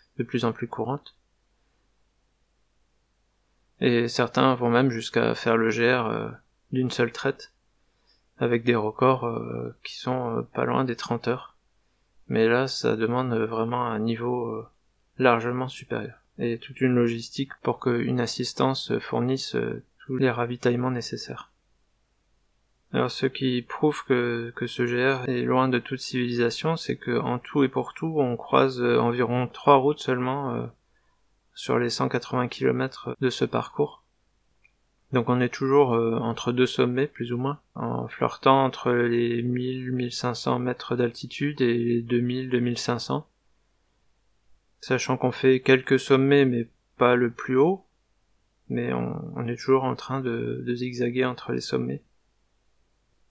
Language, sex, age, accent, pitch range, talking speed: French, male, 20-39, French, 120-130 Hz, 140 wpm